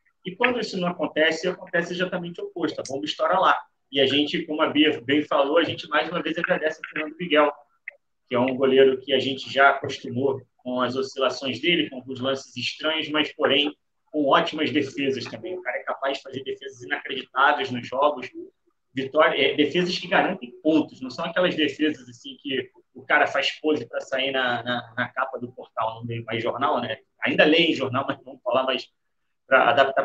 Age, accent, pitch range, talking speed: 30-49, Brazilian, 135-180 Hz, 200 wpm